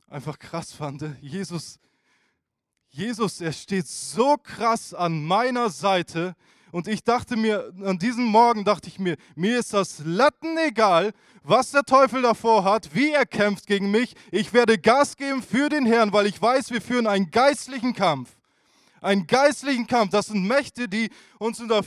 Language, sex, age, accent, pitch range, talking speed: German, male, 20-39, German, 195-260 Hz, 175 wpm